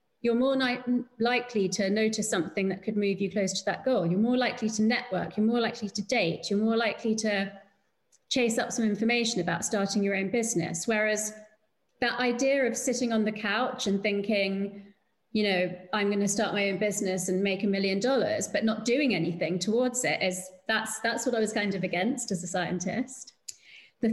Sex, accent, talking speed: female, British, 195 wpm